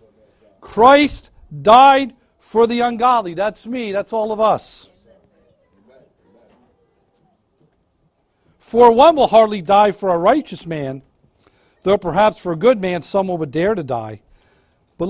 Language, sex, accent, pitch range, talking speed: English, male, American, 175-240 Hz, 125 wpm